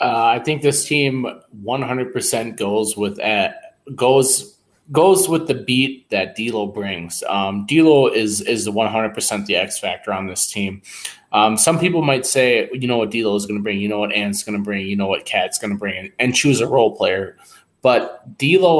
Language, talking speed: English, 205 wpm